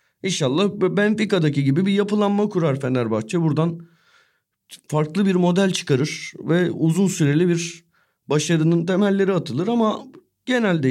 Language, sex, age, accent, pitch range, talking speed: Turkish, male, 40-59, native, 125-175 Hz, 115 wpm